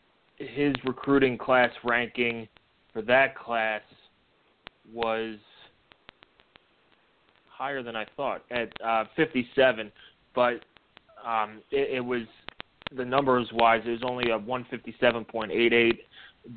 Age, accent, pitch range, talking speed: 30-49, American, 110-125 Hz, 100 wpm